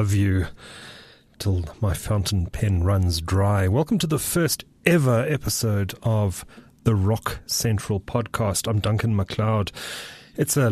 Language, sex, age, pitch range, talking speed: English, male, 30-49, 90-115 Hz, 130 wpm